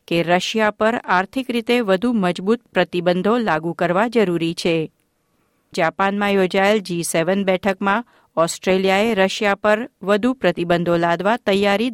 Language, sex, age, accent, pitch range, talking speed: Gujarati, female, 50-69, native, 175-220 Hz, 120 wpm